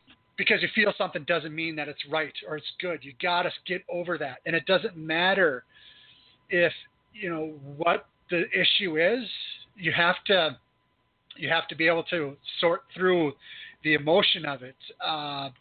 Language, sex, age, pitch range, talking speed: English, male, 40-59, 150-180 Hz, 175 wpm